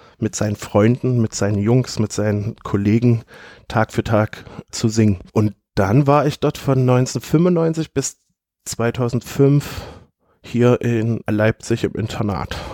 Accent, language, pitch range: German, German, 100-120 Hz